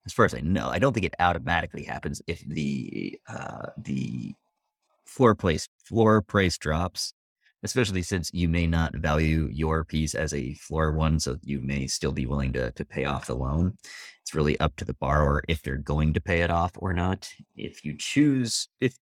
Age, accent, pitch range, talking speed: 30-49, American, 75-90 Hz, 200 wpm